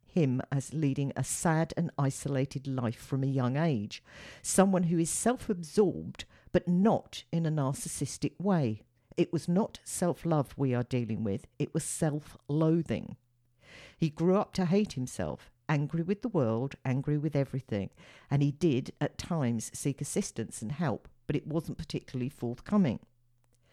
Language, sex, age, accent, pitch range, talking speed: English, female, 50-69, British, 125-170 Hz, 150 wpm